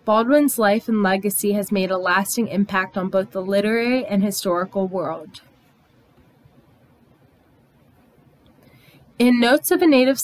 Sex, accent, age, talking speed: female, American, 20-39, 125 wpm